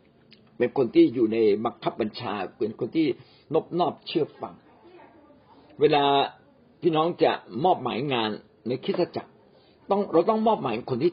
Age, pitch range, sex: 60-79, 120-195 Hz, male